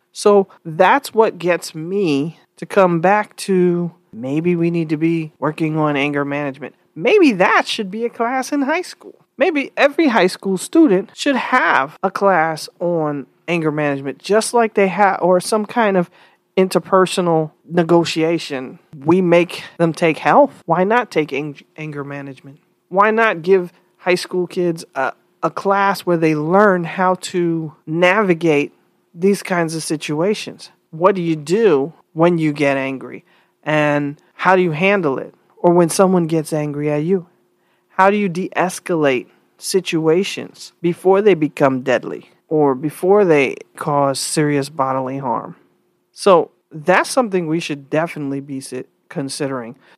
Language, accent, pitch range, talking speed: English, American, 155-200 Hz, 150 wpm